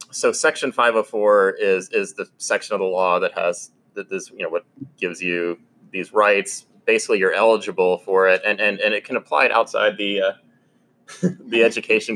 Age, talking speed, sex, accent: 20-39, 195 wpm, male, American